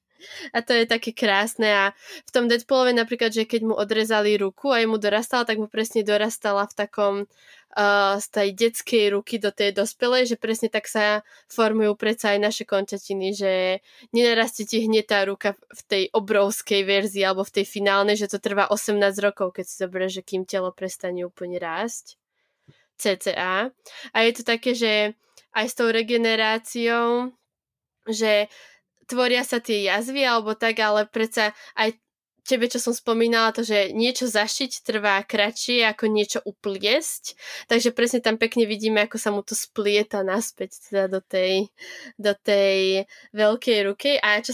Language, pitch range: Slovak, 205-230 Hz